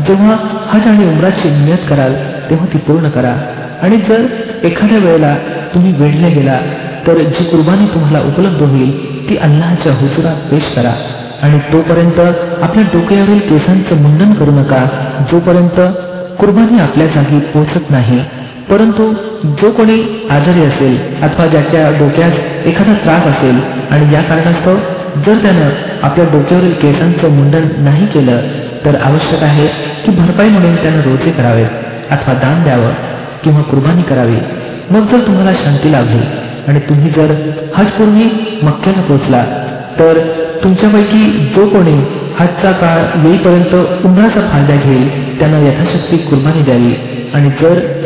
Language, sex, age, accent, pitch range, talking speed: Marathi, male, 50-69, native, 140-185 Hz, 110 wpm